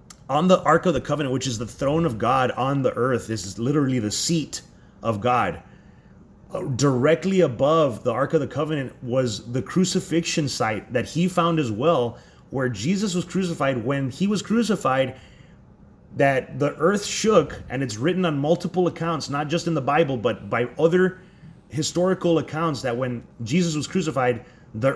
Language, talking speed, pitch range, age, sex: English, 175 wpm, 120-170 Hz, 30-49, male